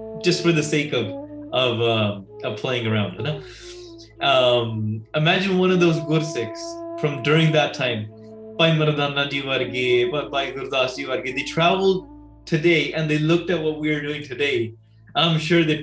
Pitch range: 130-170 Hz